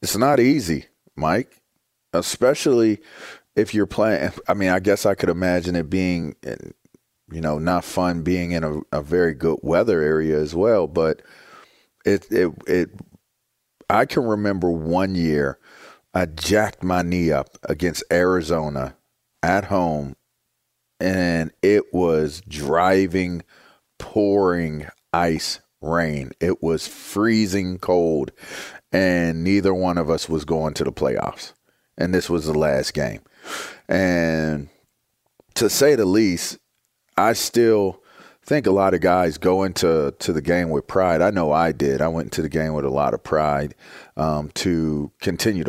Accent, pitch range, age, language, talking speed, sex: American, 80-95 Hz, 30-49, English, 145 wpm, male